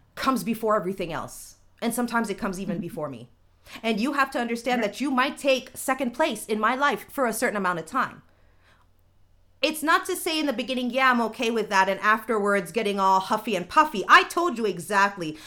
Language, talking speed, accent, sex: English, 210 wpm, American, female